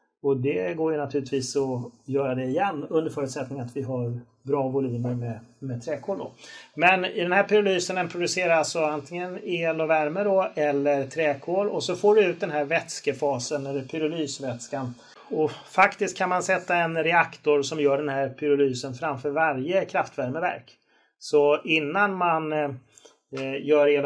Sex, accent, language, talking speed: male, native, Swedish, 160 wpm